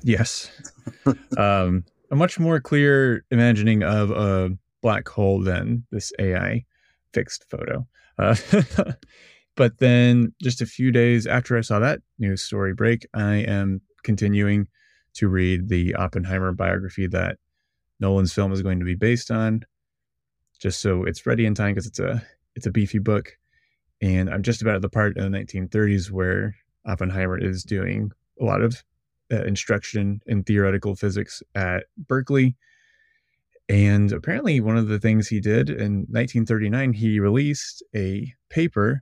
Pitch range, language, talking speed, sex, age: 100-120 Hz, English, 150 wpm, male, 20-39